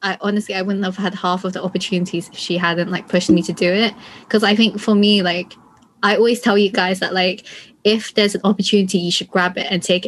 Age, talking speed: 20-39, 250 wpm